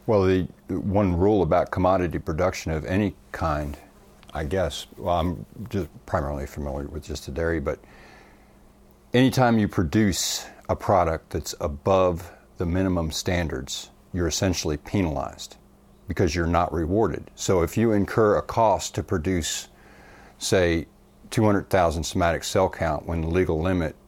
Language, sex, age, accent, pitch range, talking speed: English, male, 50-69, American, 80-95 Hz, 140 wpm